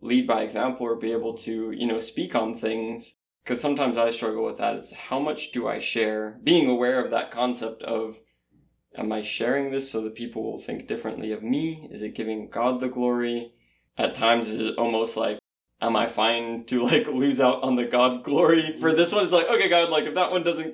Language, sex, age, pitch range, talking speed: English, male, 20-39, 110-125 Hz, 220 wpm